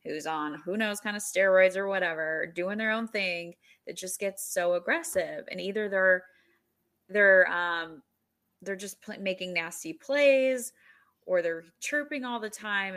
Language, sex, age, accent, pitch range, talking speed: English, female, 20-39, American, 175-220 Hz, 155 wpm